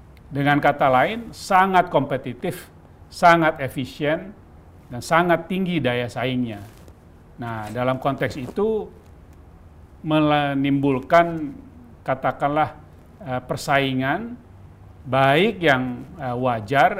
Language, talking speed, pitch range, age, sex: English, 80 wpm, 115-145 Hz, 40-59, male